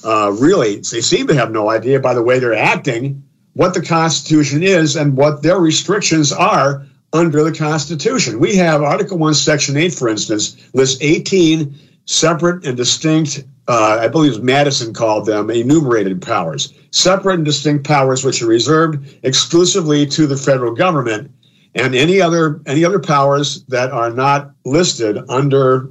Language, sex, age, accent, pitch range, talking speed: English, male, 50-69, American, 115-155 Hz, 155 wpm